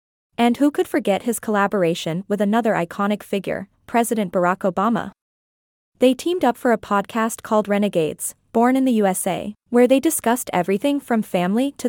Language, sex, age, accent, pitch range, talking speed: English, female, 20-39, American, 200-250 Hz, 160 wpm